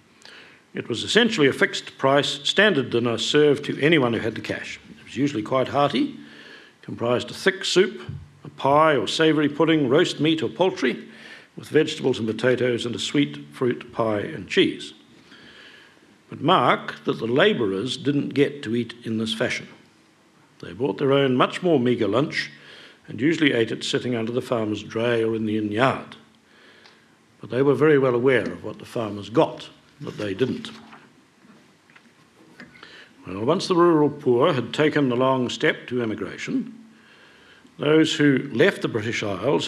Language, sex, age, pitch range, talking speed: English, male, 60-79, 115-145 Hz, 165 wpm